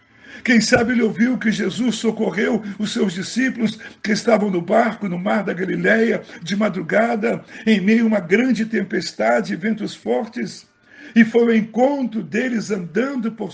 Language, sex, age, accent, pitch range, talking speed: Portuguese, male, 60-79, Brazilian, 195-235 Hz, 160 wpm